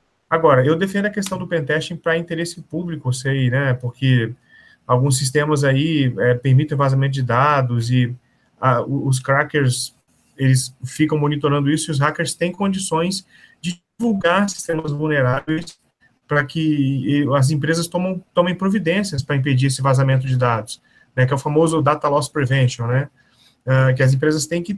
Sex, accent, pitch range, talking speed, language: male, Brazilian, 130-165 Hz, 155 wpm, Portuguese